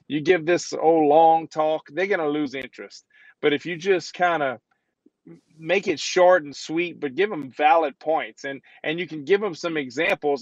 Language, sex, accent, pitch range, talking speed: English, male, American, 140-175 Hz, 200 wpm